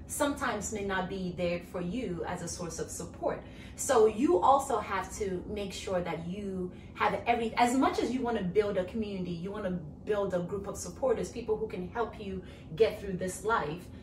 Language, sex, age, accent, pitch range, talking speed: English, female, 30-49, American, 185-235 Hz, 210 wpm